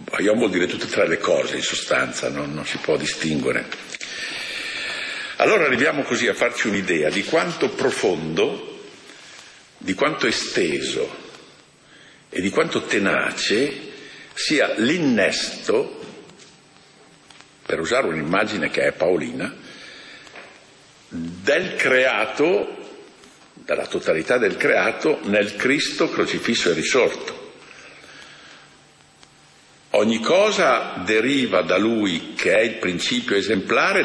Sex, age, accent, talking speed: male, 50-69, native, 105 wpm